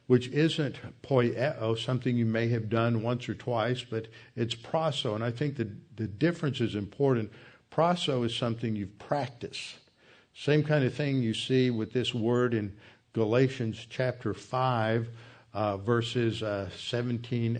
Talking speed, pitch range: 155 wpm, 110-130 Hz